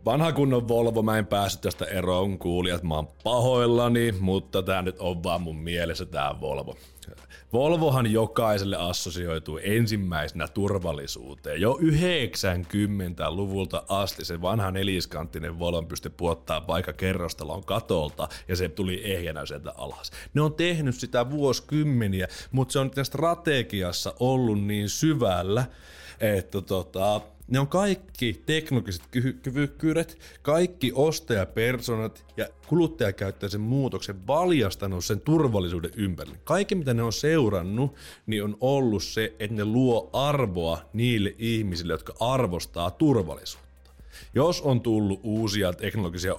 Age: 30-49